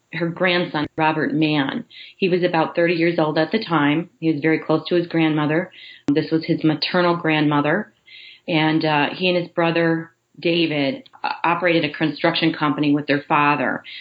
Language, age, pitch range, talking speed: English, 30-49, 155-180 Hz, 170 wpm